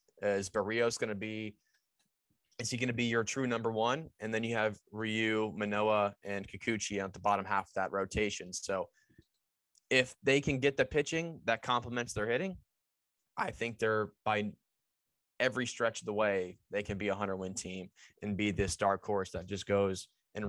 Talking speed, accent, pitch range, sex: 185 wpm, American, 100-115 Hz, male